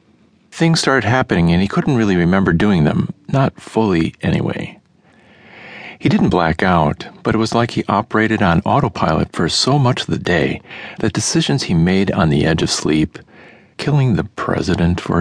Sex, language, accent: male, English, American